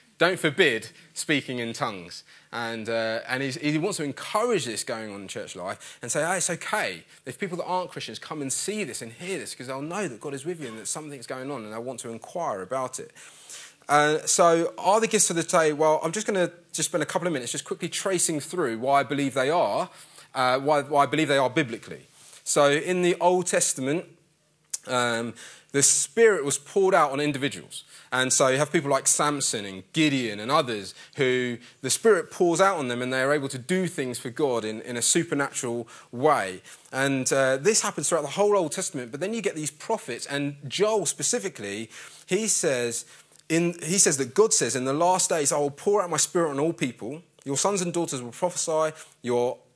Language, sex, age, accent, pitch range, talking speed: English, male, 20-39, British, 130-175 Hz, 220 wpm